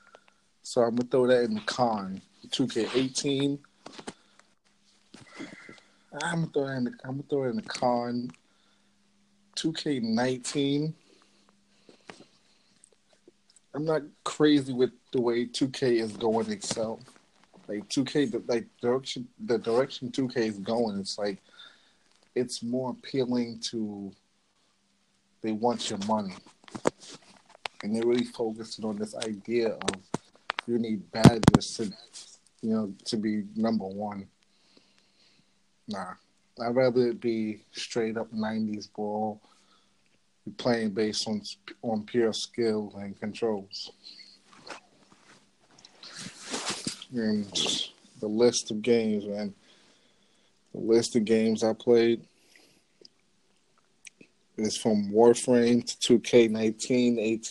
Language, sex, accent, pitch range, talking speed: English, male, American, 110-125 Hz, 115 wpm